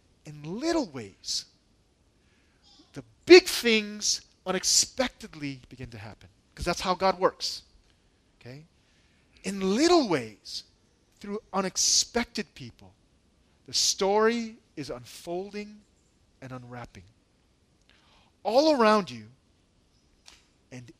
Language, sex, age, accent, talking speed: English, male, 40-59, American, 90 wpm